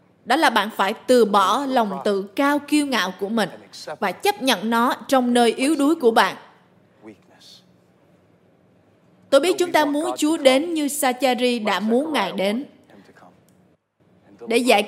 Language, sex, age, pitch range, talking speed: Vietnamese, female, 20-39, 215-285 Hz, 155 wpm